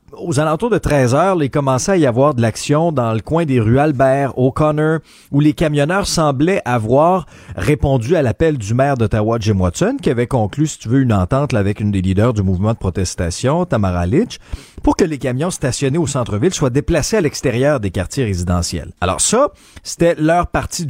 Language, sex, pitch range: French, male, 100-145 Hz